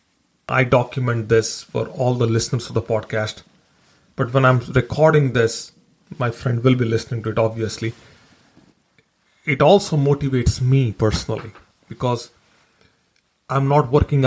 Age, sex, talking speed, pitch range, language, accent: 40-59, male, 135 wpm, 115-140 Hz, English, Indian